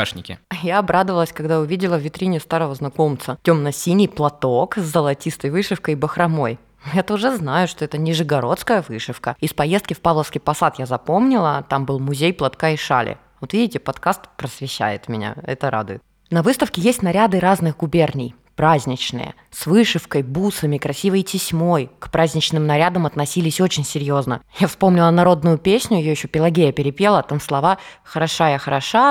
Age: 20-39